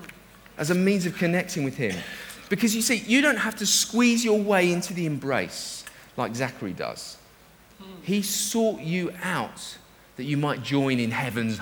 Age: 40-59